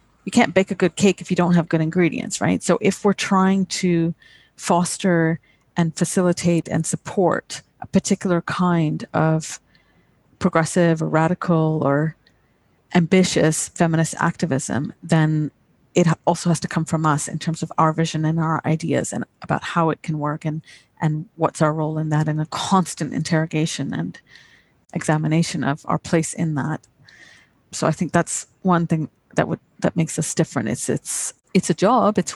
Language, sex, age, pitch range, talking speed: English, female, 30-49, 155-175 Hz, 170 wpm